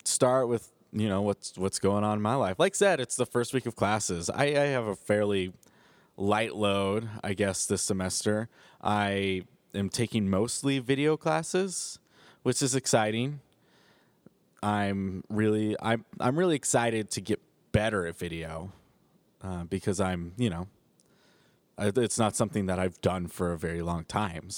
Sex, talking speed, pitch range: male, 165 wpm, 95-120 Hz